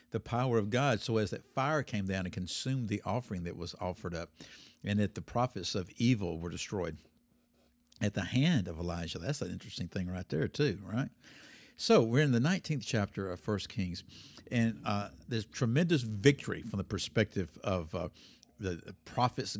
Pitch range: 95-125 Hz